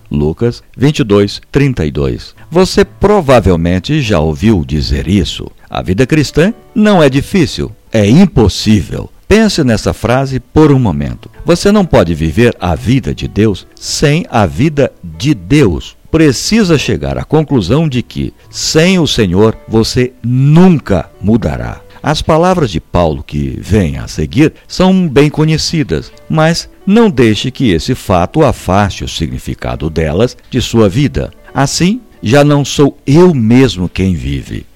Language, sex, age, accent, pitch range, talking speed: Portuguese, male, 60-79, Brazilian, 85-145 Hz, 140 wpm